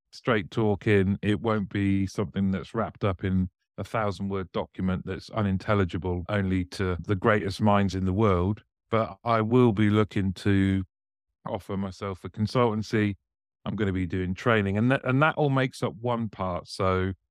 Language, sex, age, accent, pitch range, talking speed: English, male, 40-59, British, 95-110 Hz, 170 wpm